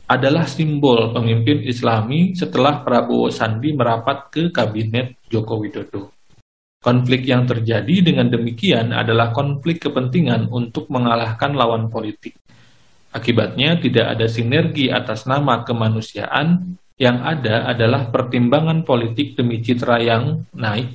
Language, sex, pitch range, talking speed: Indonesian, male, 115-135 Hz, 115 wpm